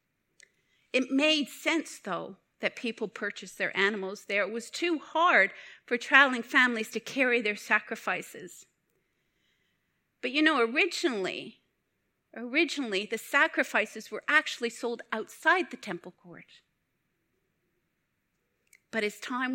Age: 50-69